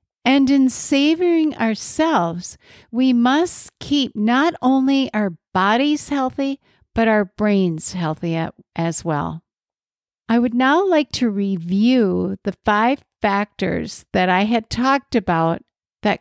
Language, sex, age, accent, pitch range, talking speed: English, female, 60-79, American, 190-250 Hz, 120 wpm